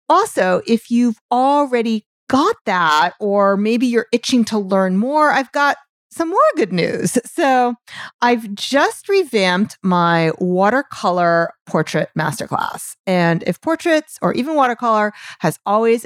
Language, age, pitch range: English, 40-59, 195-270 Hz